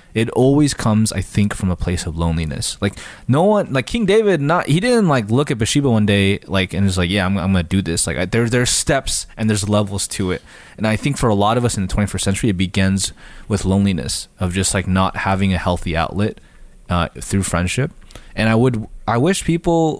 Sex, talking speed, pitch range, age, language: male, 235 wpm, 95-115 Hz, 20-39, English